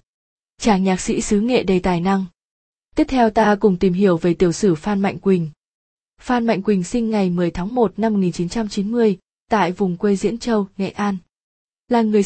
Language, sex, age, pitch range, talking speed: Vietnamese, female, 20-39, 185-225 Hz, 190 wpm